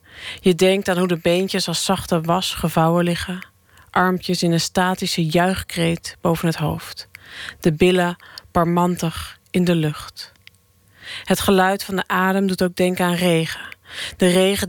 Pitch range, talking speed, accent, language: 160-180 Hz, 150 wpm, Dutch, Dutch